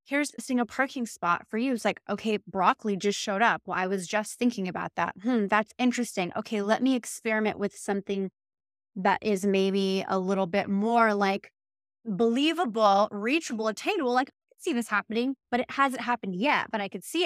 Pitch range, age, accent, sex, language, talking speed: 195-240 Hz, 20-39, American, female, English, 190 wpm